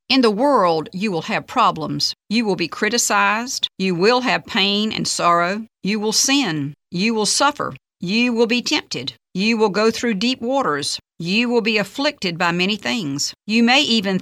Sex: female